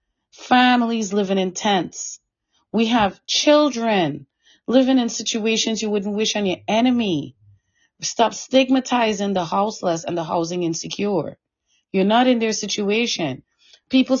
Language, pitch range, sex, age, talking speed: English, 175-230 Hz, female, 30-49, 125 wpm